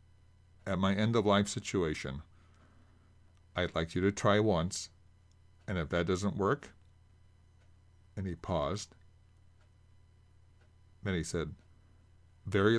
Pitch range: 90-95 Hz